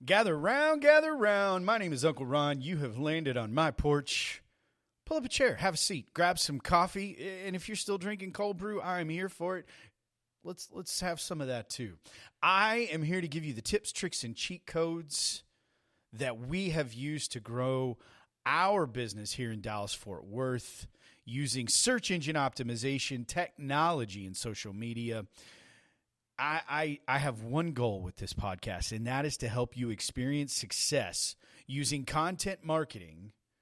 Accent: American